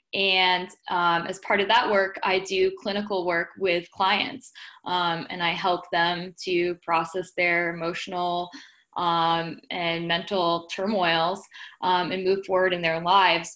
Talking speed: 145 wpm